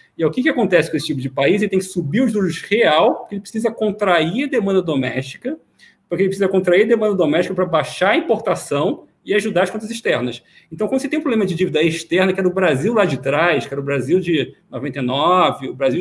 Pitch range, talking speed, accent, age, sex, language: 150-210 Hz, 235 wpm, Brazilian, 40-59, male, Portuguese